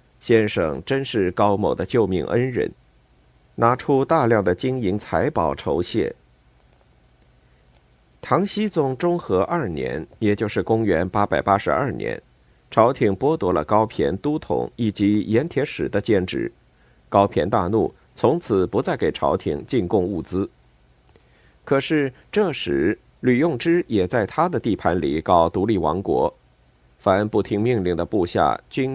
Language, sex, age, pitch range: Chinese, male, 50-69, 90-130 Hz